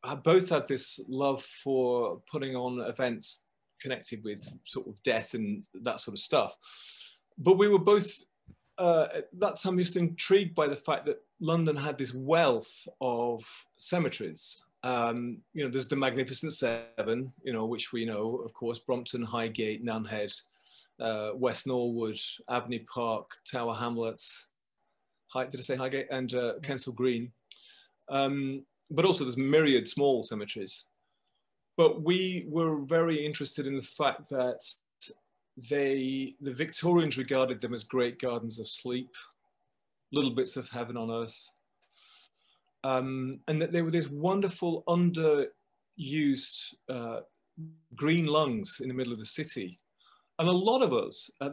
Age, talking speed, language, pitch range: 30-49, 145 wpm, English, 120-165 Hz